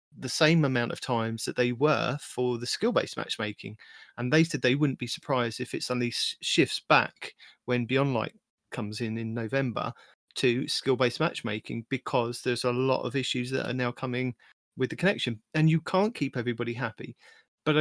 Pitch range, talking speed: 125-155 Hz, 180 wpm